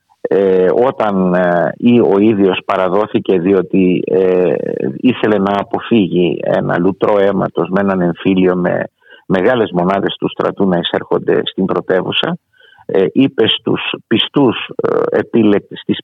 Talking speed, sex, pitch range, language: 115 wpm, male, 95-120 Hz, Greek